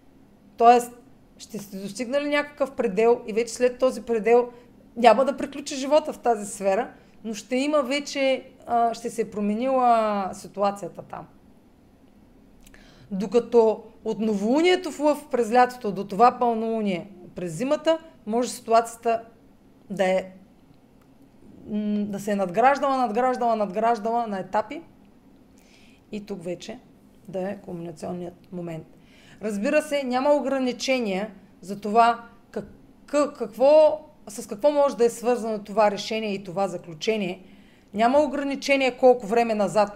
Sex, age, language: female, 30-49, Bulgarian